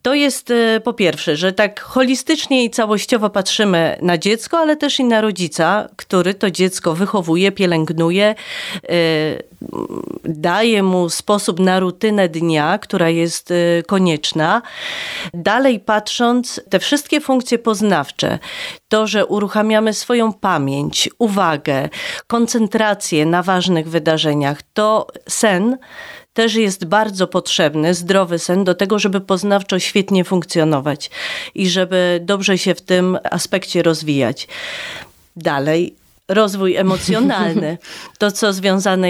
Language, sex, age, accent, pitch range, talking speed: Polish, female, 30-49, native, 175-220 Hz, 115 wpm